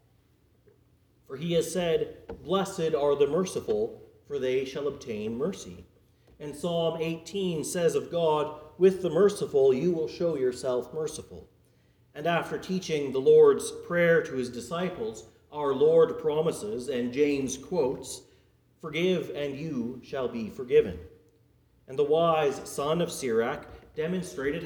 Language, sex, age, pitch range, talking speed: English, male, 40-59, 135-195 Hz, 135 wpm